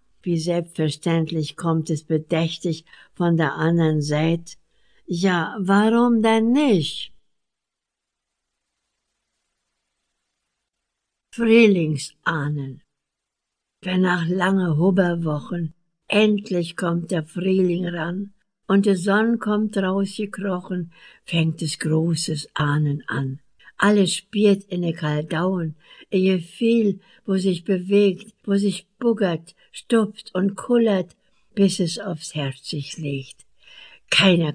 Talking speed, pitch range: 95 wpm, 160-200 Hz